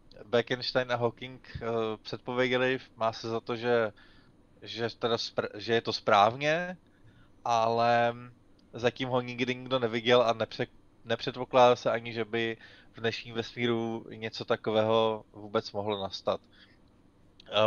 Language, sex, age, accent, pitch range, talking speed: Czech, male, 20-39, native, 100-125 Hz, 130 wpm